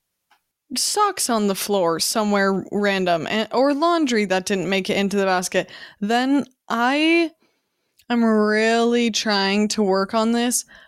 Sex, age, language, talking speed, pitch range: female, 20-39, English, 130 wpm, 200-240 Hz